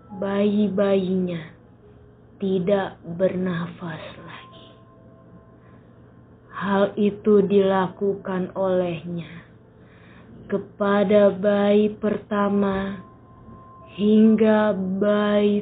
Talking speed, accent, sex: 50 wpm, native, female